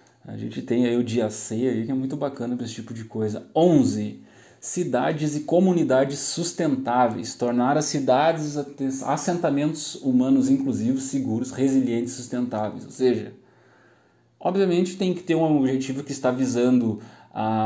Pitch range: 115-140 Hz